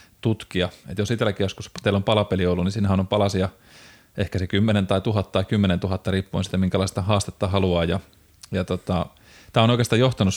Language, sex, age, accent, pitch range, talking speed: Finnish, male, 30-49, native, 95-105 Hz, 195 wpm